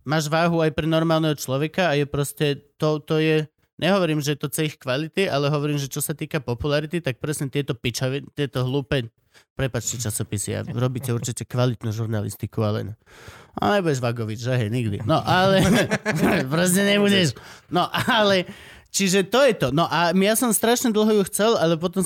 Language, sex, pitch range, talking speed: Slovak, male, 135-175 Hz, 175 wpm